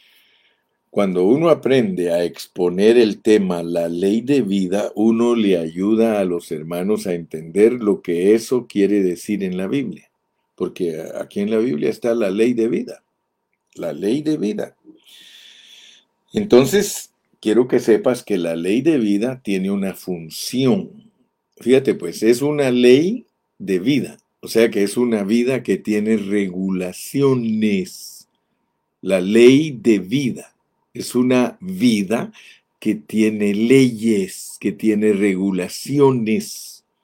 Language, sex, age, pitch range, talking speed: Spanish, male, 50-69, 95-125 Hz, 135 wpm